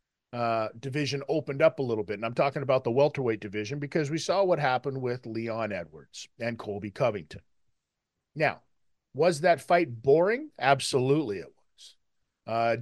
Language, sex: English, male